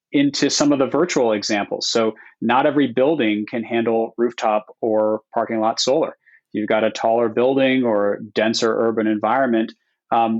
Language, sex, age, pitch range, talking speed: English, male, 30-49, 110-130 Hz, 155 wpm